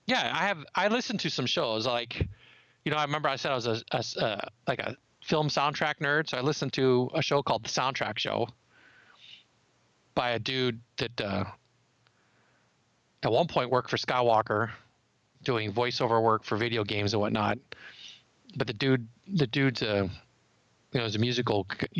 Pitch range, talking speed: 110-135 Hz, 180 wpm